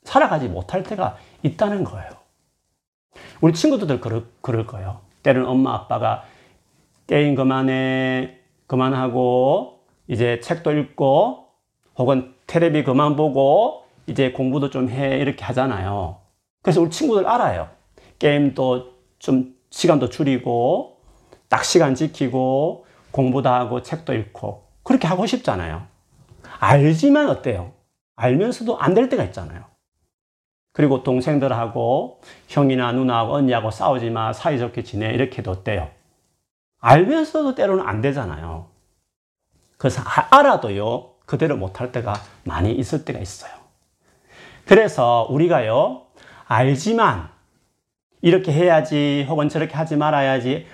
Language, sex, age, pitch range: Korean, male, 40-59, 120-165 Hz